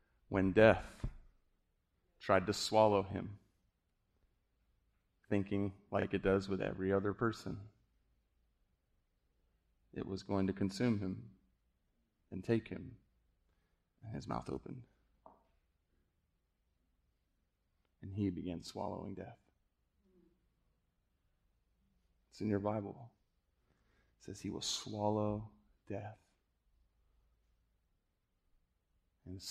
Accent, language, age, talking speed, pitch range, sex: American, English, 30-49, 85 wpm, 85-105 Hz, male